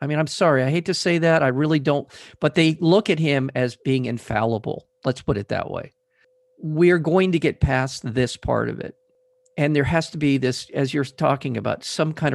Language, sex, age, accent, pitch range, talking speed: English, male, 50-69, American, 130-180 Hz, 225 wpm